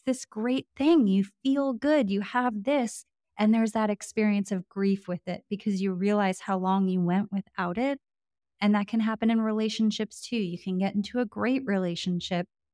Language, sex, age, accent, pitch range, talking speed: English, female, 20-39, American, 180-215 Hz, 190 wpm